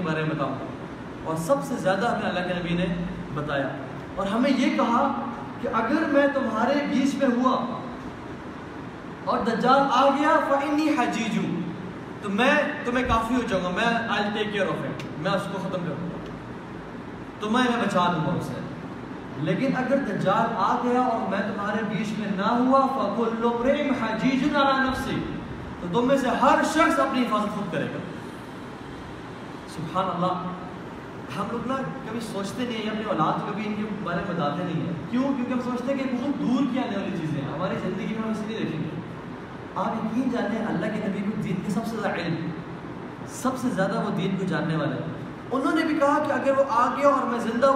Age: 20-39